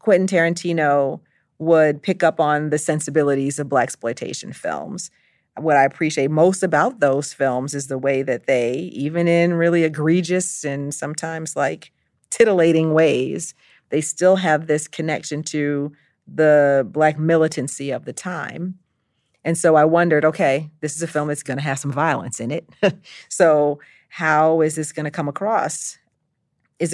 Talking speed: 160 wpm